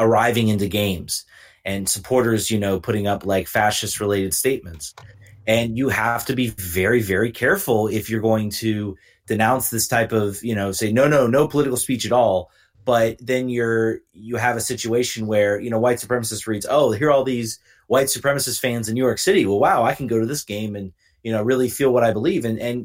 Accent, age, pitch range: American, 30-49, 105-130 Hz